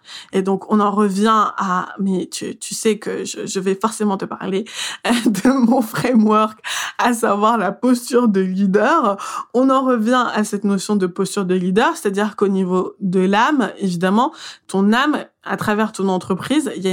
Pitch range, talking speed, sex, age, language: 190-225 Hz, 180 wpm, female, 20-39, French